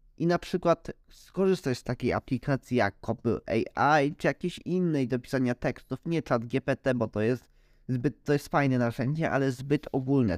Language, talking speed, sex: Polish, 175 wpm, male